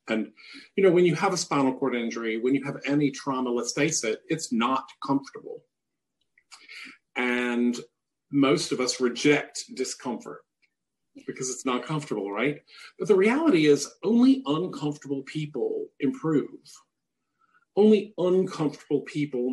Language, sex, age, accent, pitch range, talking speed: English, male, 40-59, American, 135-195 Hz, 130 wpm